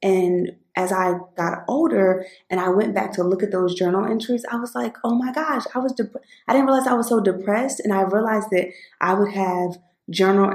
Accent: American